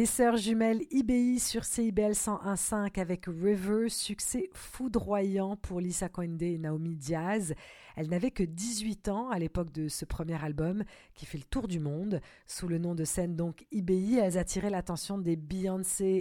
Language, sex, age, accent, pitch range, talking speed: French, female, 40-59, French, 165-210 Hz, 170 wpm